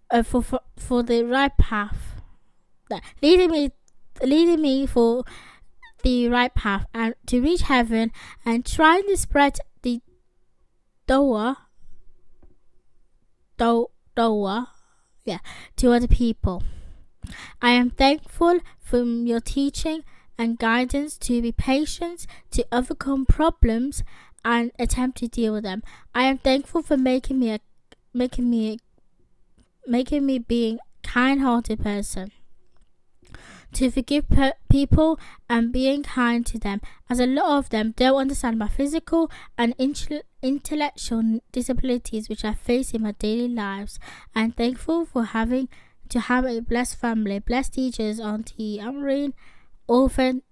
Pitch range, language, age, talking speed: 230-270 Hz, English, 20-39, 130 wpm